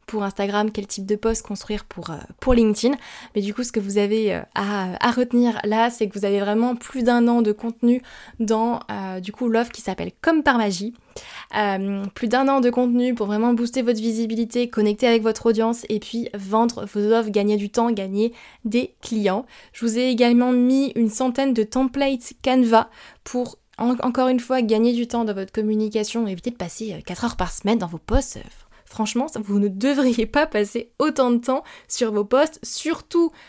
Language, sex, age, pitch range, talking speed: French, female, 20-39, 210-245 Hz, 205 wpm